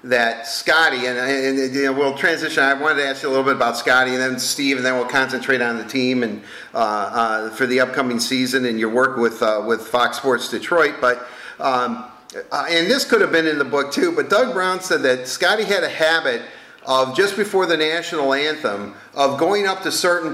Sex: male